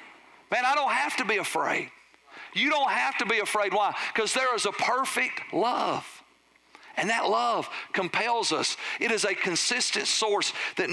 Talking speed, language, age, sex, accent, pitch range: 170 wpm, English, 50-69, male, American, 180-215 Hz